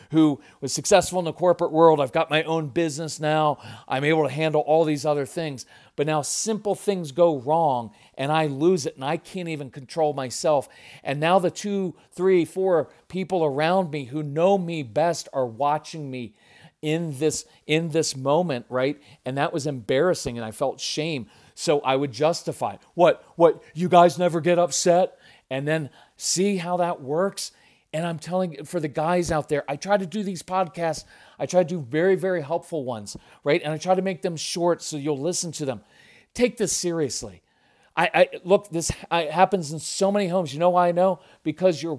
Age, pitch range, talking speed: 40-59, 150-180 Hz, 200 wpm